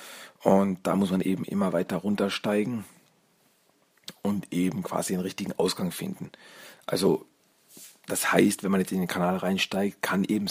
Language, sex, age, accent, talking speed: German, male, 40-59, German, 155 wpm